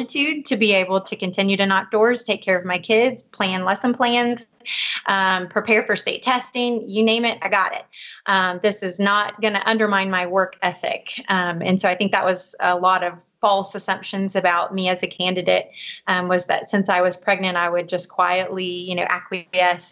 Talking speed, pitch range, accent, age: 200 wpm, 185-225 Hz, American, 30-49